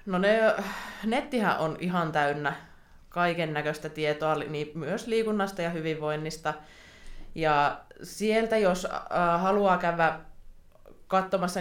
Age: 20-39